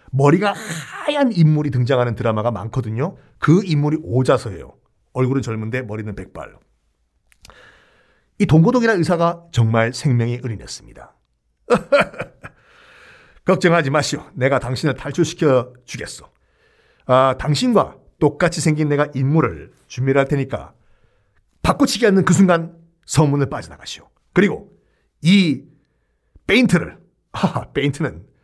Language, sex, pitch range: Korean, male, 125-170 Hz